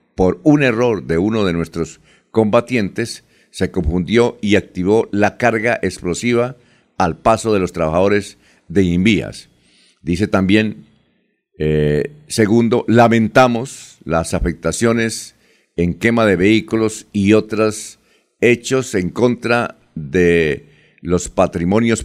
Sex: male